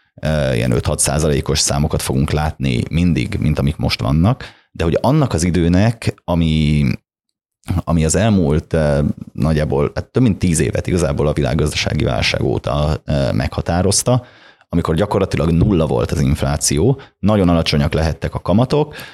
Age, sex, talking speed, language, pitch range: 30-49, male, 135 wpm, Hungarian, 75-95 Hz